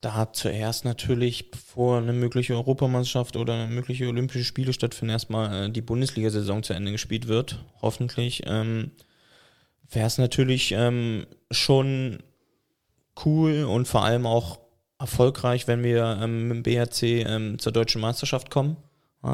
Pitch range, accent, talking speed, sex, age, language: 115-130 Hz, German, 145 wpm, male, 20-39, German